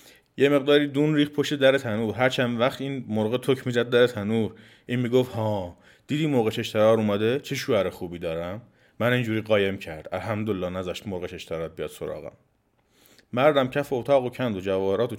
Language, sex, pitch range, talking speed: Persian, male, 110-140 Hz, 175 wpm